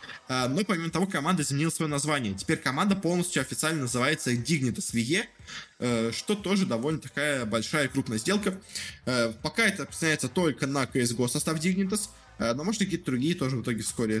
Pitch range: 120-165 Hz